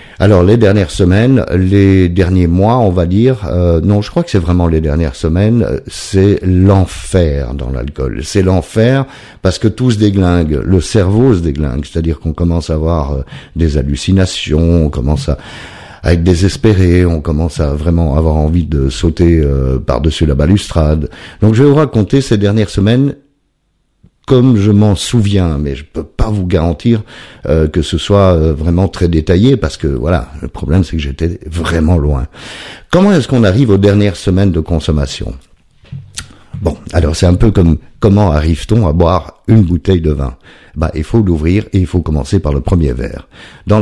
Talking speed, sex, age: 180 wpm, male, 50-69